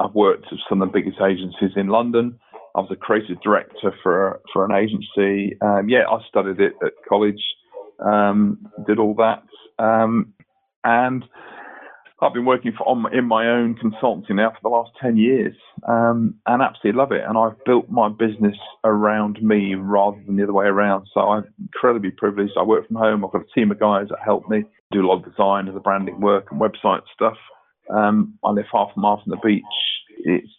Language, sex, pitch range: English, male, 100-115 Hz